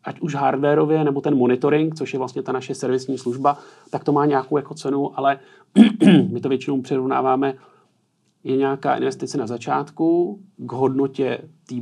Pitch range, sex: 120-145 Hz, male